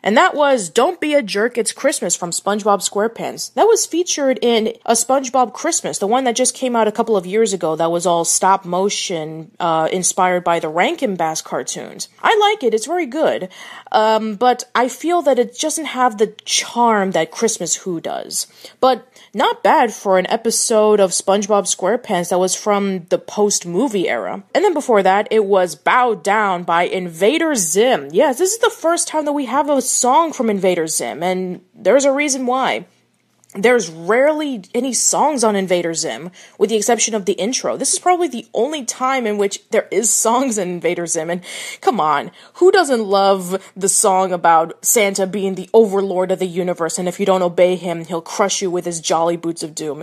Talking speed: 195 wpm